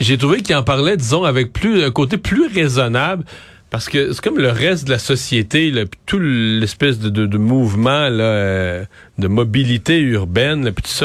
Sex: male